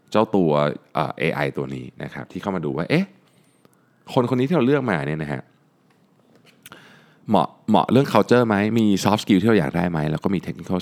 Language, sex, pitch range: Thai, male, 75-110 Hz